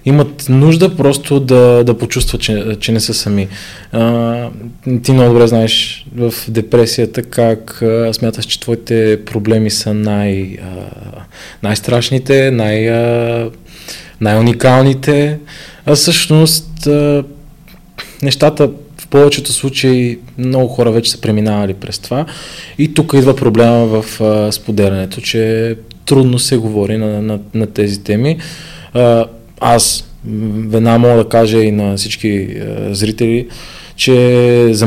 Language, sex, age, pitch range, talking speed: Bulgarian, male, 20-39, 105-135 Hz, 125 wpm